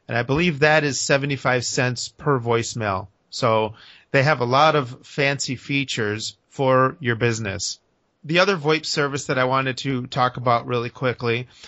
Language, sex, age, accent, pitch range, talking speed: English, male, 30-49, American, 120-145 Hz, 165 wpm